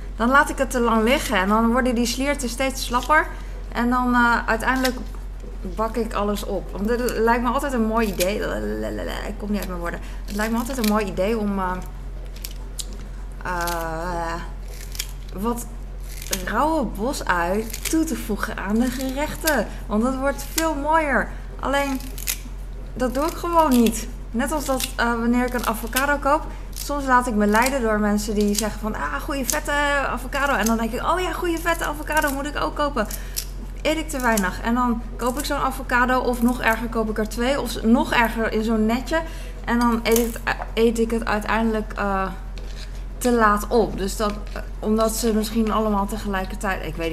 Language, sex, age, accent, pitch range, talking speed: Dutch, female, 20-39, Dutch, 205-260 Hz, 185 wpm